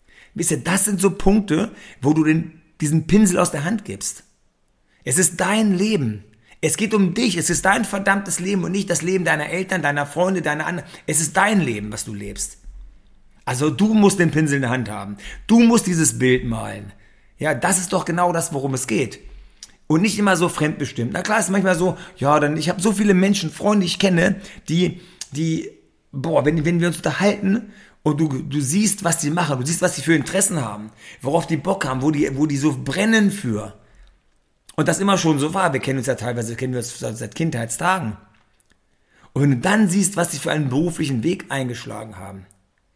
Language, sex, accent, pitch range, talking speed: German, male, German, 130-185 Hz, 210 wpm